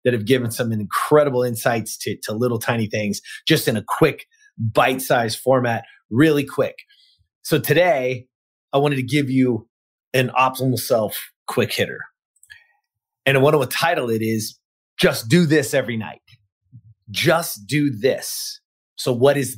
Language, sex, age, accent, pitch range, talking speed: English, male, 30-49, American, 120-170 Hz, 150 wpm